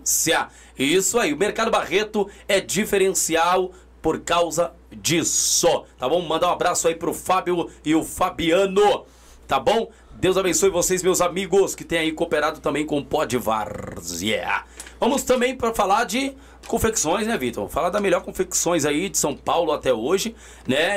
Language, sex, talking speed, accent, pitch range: Portuguese, male, 160 wpm, Brazilian, 180-255 Hz